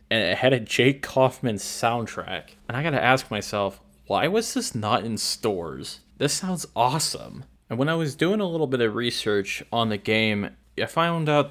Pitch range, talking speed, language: 105-135 Hz, 195 wpm, English